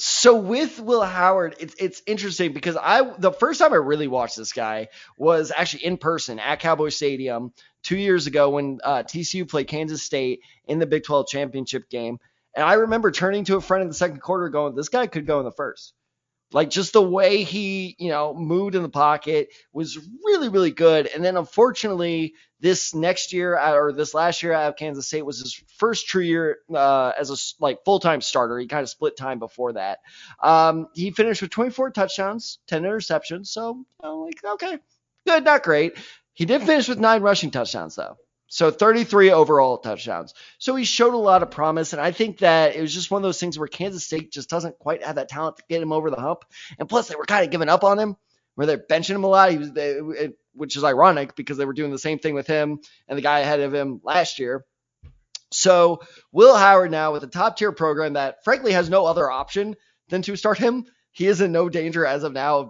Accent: American